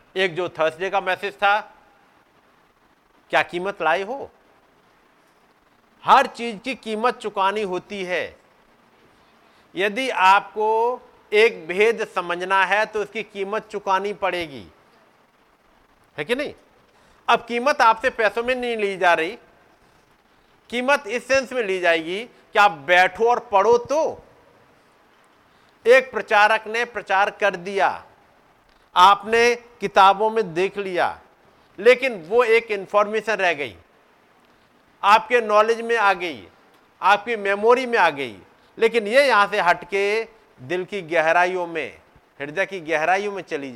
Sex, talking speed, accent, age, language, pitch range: male, 130 wpm, native, 50-69, Hindi, 180-230 Hz